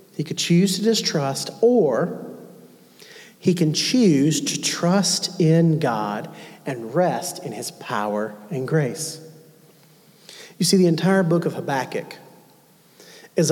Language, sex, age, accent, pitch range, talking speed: English, male, 40-59, American, 155-200 Hz, 125 wpm